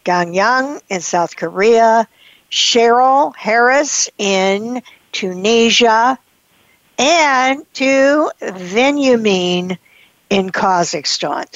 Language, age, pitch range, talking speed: English, 60-79, 185-235 Hz, 70 wpm